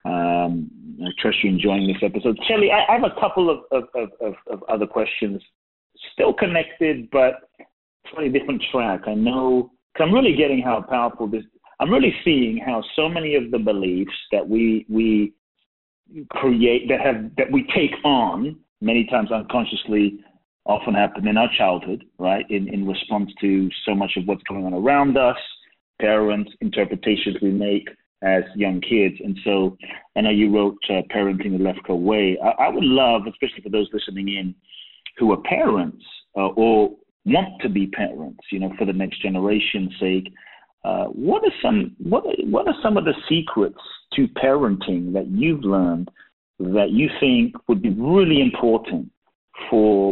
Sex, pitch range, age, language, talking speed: male, 100-140 Hz, 40-59, English, 170 wpm